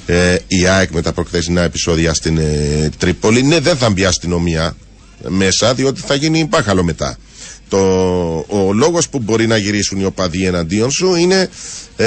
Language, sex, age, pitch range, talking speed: Greek, male, 40-59, 90-140 Hz, 170 wpm